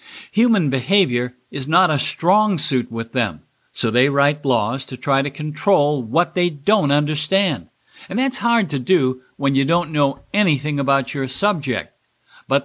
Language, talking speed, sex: English, 165 wpm, male